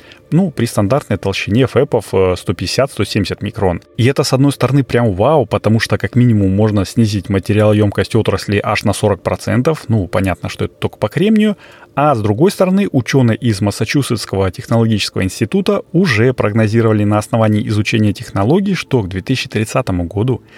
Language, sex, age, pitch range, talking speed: Russian, male, 30-49, 100-130 Hz, 155 wpm